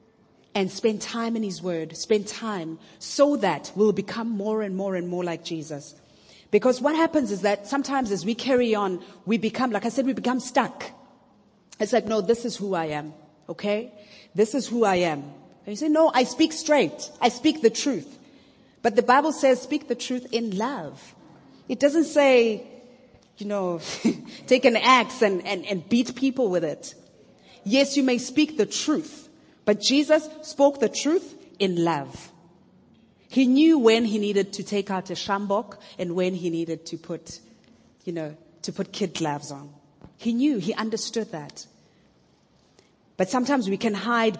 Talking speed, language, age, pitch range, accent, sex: 175 wpm, English, 30-49, 185-245 Hz, South African, female